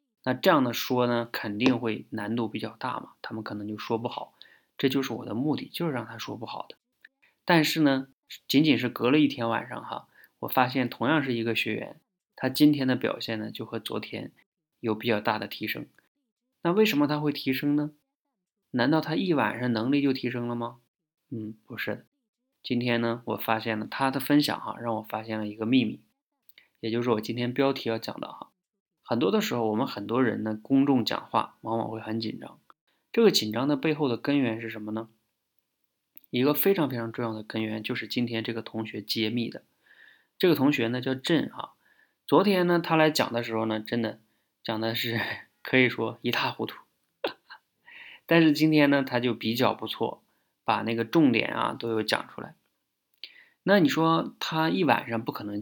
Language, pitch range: Chinese, 110-150 Hz